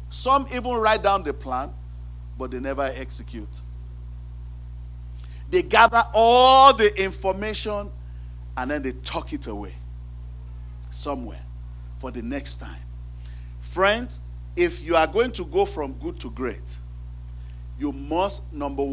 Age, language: 40-59, English